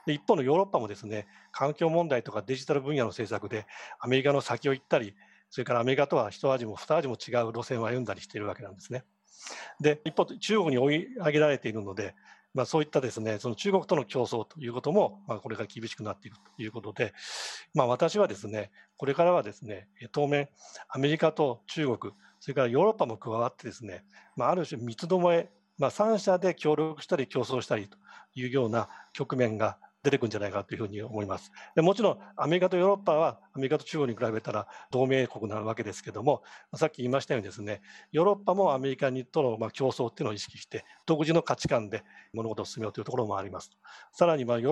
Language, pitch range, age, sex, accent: Japanese, 110-150 Hz, 40-59, male, native